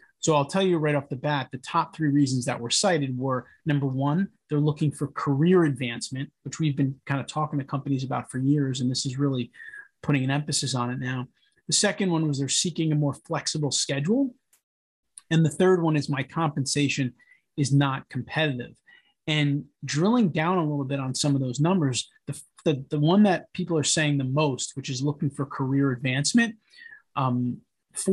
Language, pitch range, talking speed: English, 140-175 Hz, 195 wpm